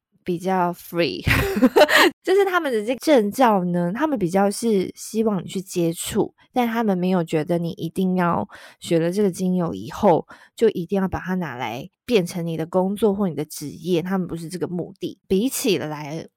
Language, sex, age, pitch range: Chinese, female, 20-39, 170-205 Hz